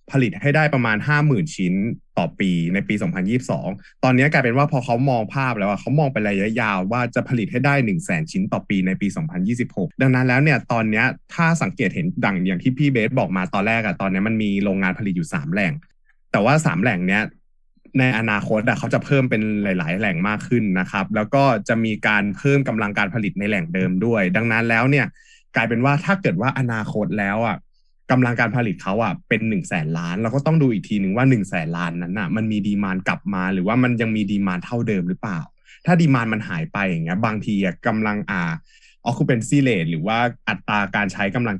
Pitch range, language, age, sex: 100-140 Hz, Thai, 20-39, male